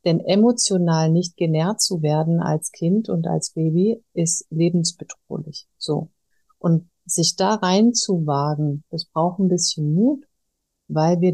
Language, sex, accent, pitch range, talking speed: German, female, German, 165-185 Hz, 130 wpm